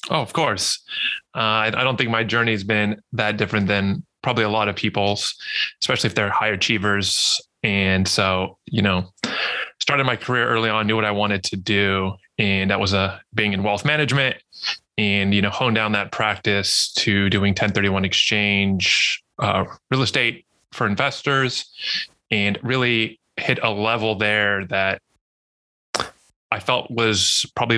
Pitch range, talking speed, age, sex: 100-115 Hz, 160 wpm, 20-39, male